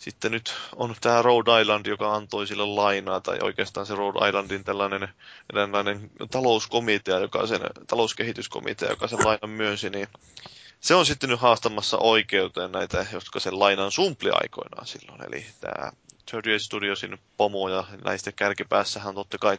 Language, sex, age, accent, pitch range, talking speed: Finnish, male, 20-39, native, 100-115 Hz, 145 wpm